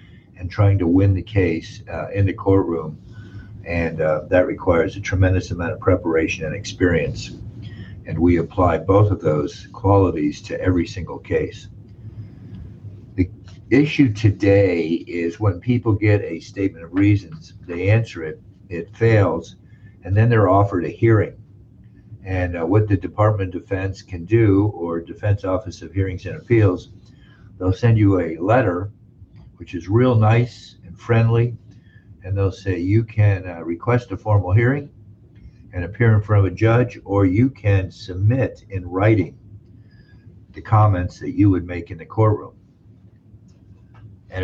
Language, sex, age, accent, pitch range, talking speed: English, male, 50-69, American, 95-110 Hz, 155 wpm